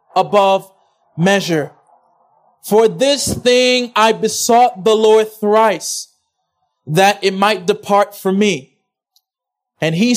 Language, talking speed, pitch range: English, 105 wpm, 190-230 Hz